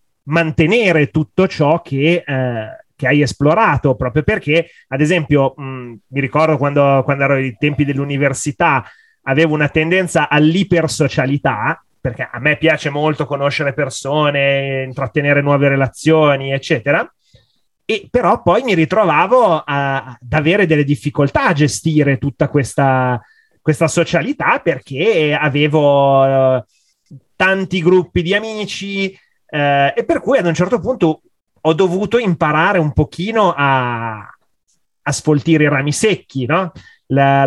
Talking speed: 125 wpm